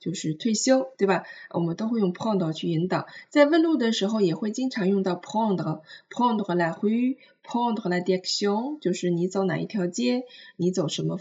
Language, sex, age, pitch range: Chinese, female, 20-39, 175-230 Hz